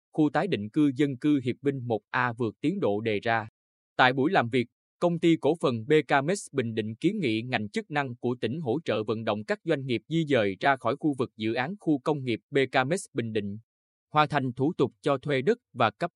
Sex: male